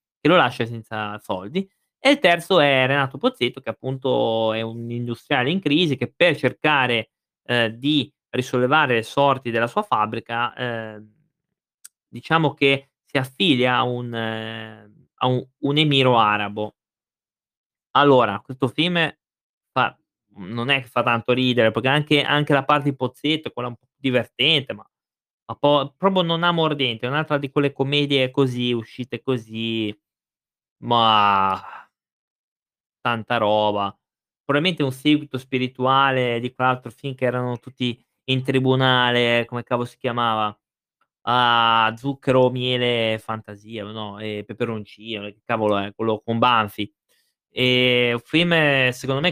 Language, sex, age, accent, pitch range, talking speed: Italian, male, 20-39, native, 115-140 Hz, 140 wpm